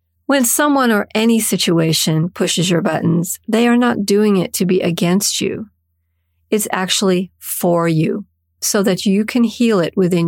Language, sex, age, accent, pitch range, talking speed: English, female, 50-69, American, 165-220 Hz, 165 wpm